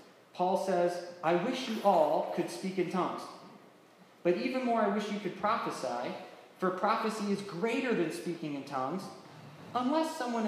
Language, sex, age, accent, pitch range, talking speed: English, male, 20-39, American, 165-210 Hz, 160 wpm